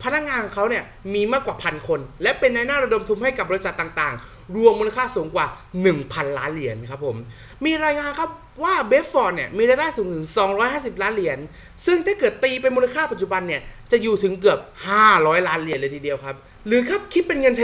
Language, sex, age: Thai, male, 30-49